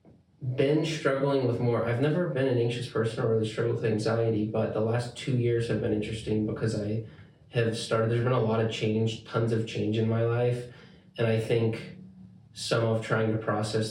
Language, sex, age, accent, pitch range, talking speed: English, male, 20-39, American, 110-120 Hz, 205 wpm